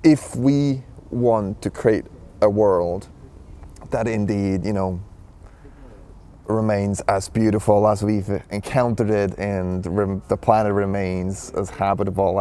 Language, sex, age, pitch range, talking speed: Danish, male, 30-49, 95-110 Hz, 120 wpm